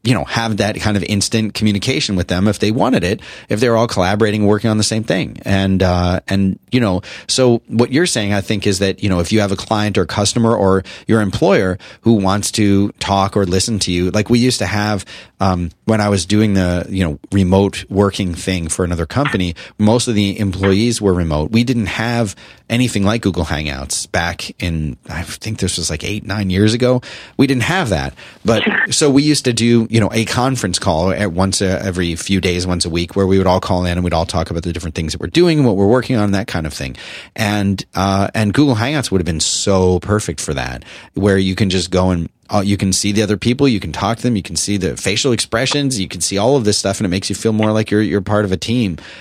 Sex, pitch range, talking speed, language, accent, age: male, 95-110 Hz, 250 wpm, English, American, 30-49